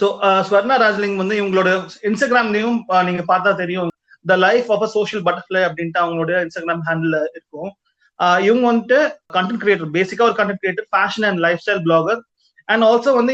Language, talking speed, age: Tamil, 160 wpm, 30-49